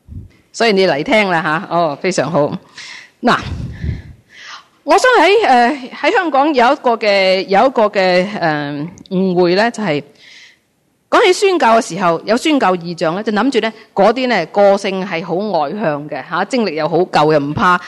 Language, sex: Chinese, female